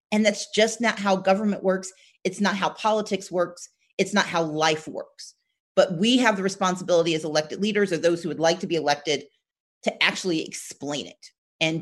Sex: female